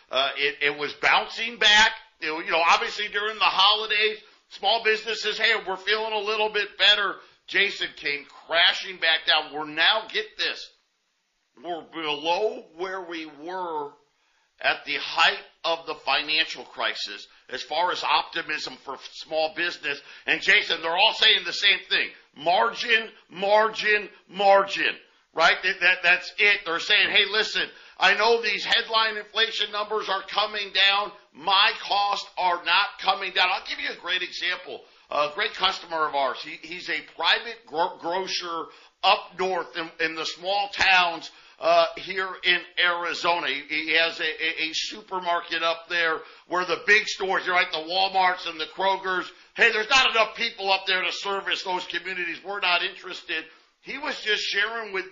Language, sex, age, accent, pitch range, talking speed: English, male, 50-69, American, 170-210 Hz, 170 wpm